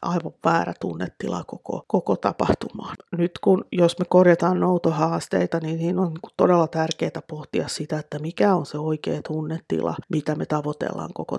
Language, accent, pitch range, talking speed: Finnish, native, 150-175 Hz, 155 wpm